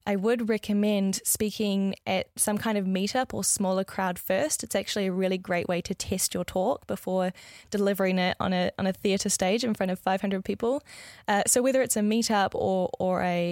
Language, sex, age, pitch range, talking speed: English, female, 10-29, 185-220 Hz, 205 wpm